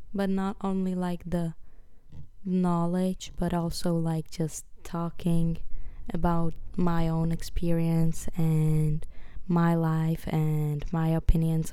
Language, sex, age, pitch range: English, female, 20-39, 160-180 Hz